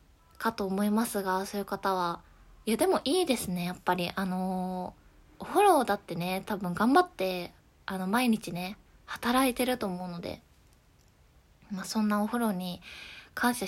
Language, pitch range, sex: Japanese, 195-250 Hz, female